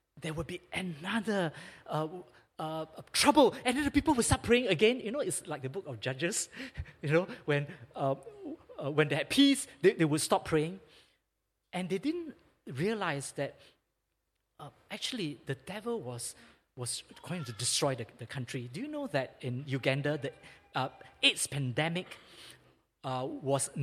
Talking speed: 165 wpm